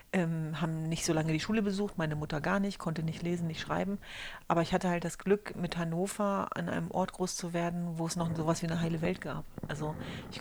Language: German